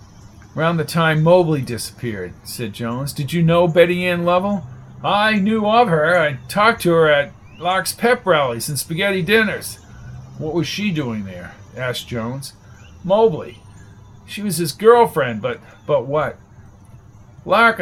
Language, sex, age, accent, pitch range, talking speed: English, male, 50-69, American, 115-175 Hz, 150 wpm